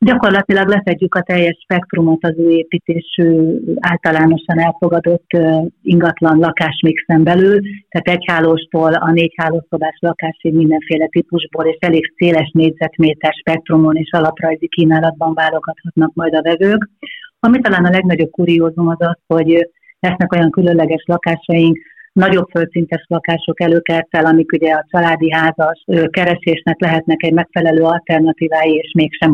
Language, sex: Hungarian, female